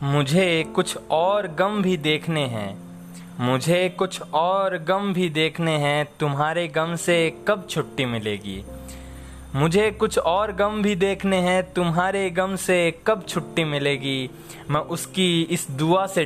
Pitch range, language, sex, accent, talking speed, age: 125-165 Hz, Hindi, male, native, 140 wpm, 20-39